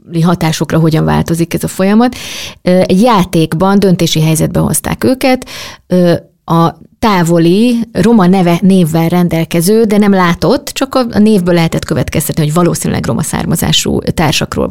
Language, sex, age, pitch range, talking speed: Hungarian, female, 30-49, 160-200 Hz, 125 wpm